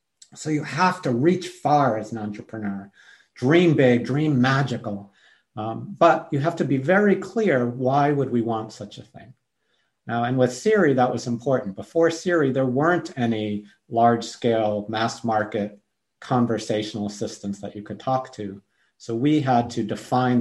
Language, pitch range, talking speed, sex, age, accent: English, 115-165 Hz, 165 wpm, male, 50-69, American